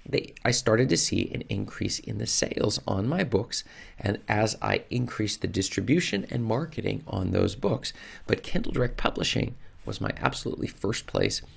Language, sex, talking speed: English, male, 165 wpm